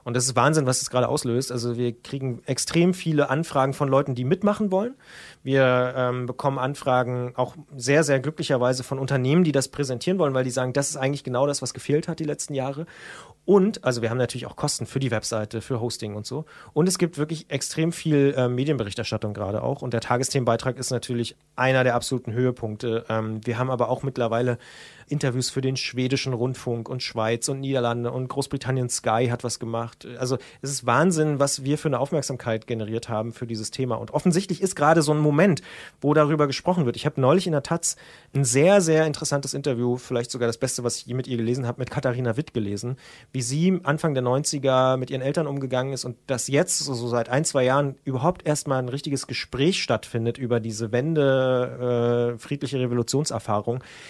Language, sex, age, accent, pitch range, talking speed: German, male, 30-49, German, 120-150 Hz, 200 wpm